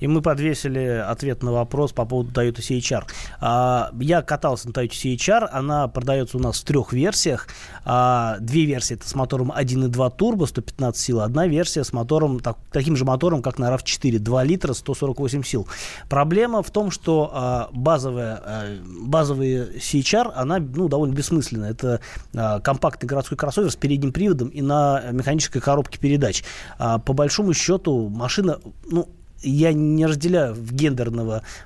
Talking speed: 145 wpm